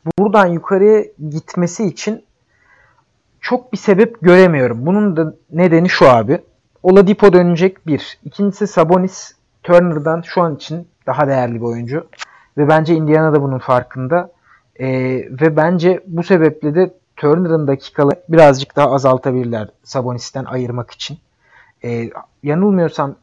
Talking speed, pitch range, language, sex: 120 wpm, 140-180 Hz, Turkish, male